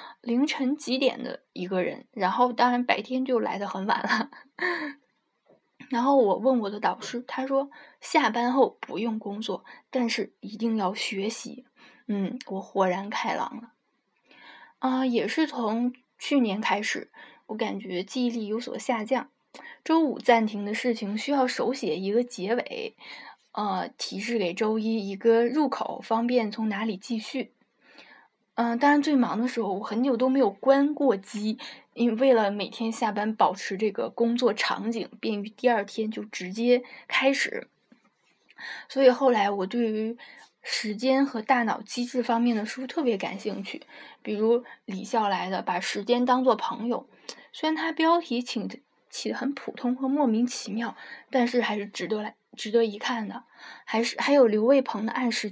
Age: 10-29